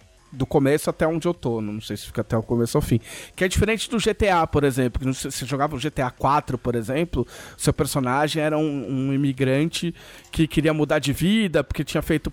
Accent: Brazilian